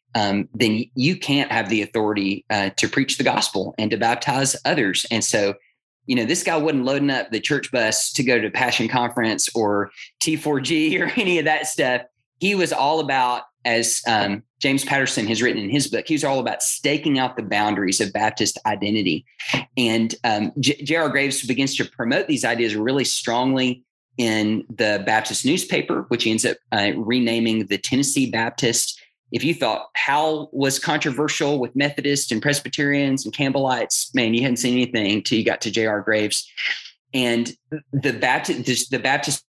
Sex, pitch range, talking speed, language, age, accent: male, 110-140 Hz, 175 wpm, English, 30-49, American